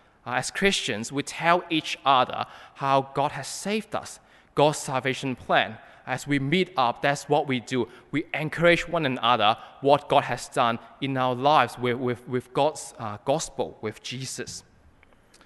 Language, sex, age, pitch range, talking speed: English, male, 20-39, 110-140 Hz, 165 wpm